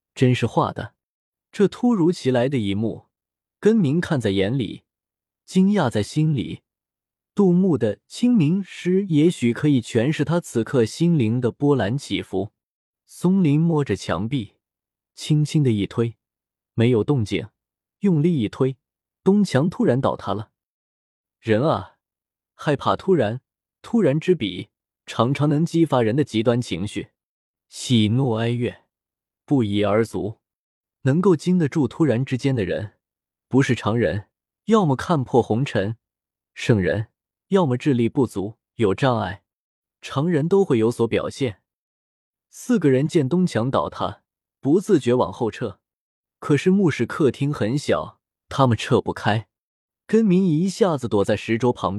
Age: 20-39